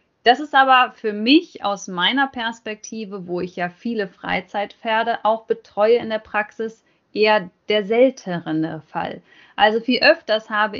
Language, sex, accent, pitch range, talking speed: German, female, German, 195-240 Hz, 145 wpm